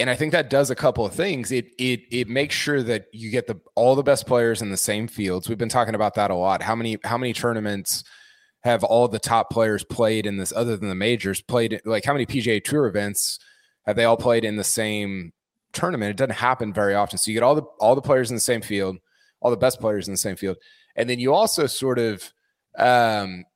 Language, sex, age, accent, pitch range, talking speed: English, male, 20-39, American, 105-130 Hz, 245 wpm